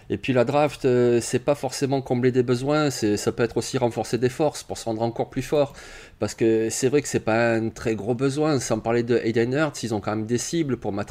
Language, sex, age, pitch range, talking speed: French, male, 30-49, 105-130 Hz, 260 wpm